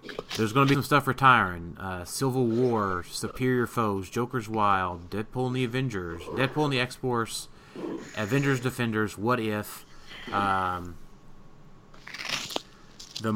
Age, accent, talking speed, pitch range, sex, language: 30-49, American, 125 wpm, 95-120 Hz, male, English